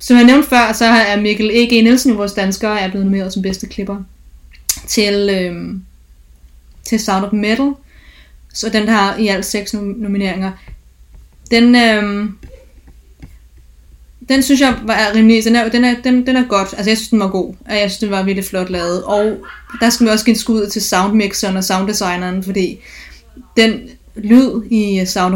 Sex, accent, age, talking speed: female, native, 20-39, 180 wpm